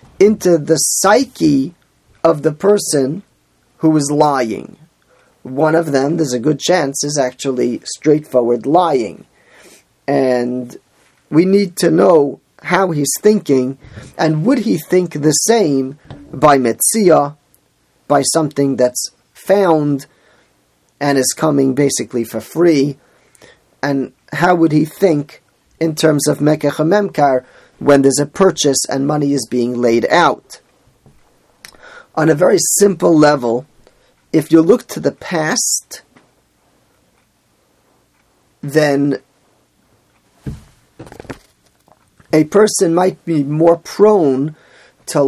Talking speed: 115 wpm